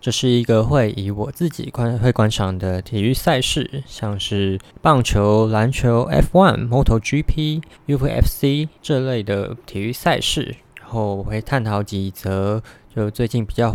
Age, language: 20-39, Chinese